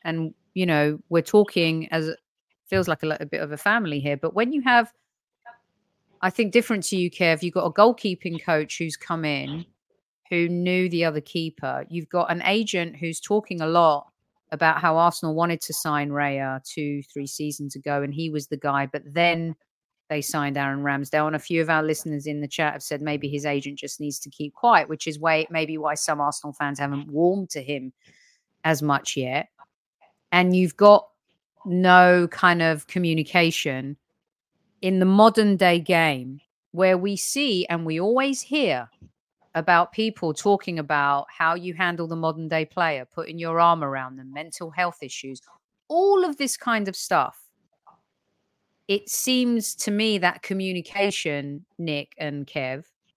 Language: English